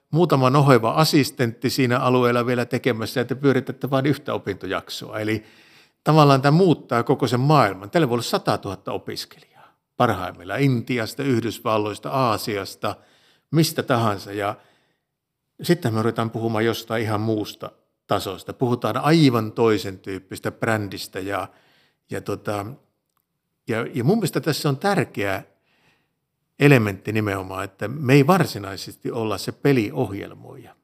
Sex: male